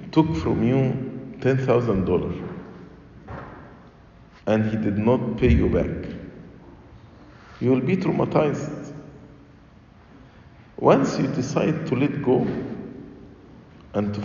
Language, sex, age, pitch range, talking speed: English, male, 50-69, 100-130 Hz, 95 wpm